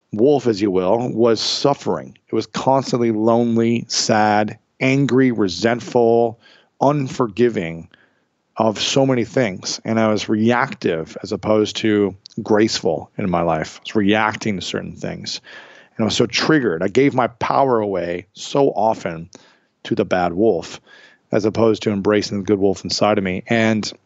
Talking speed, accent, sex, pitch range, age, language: 155 wpm, American, male, 100-115 Hz, 40-59, English